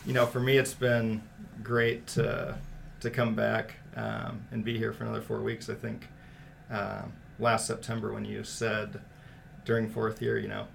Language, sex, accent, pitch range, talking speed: English, male, American, 110-135 Hz, 185 wpm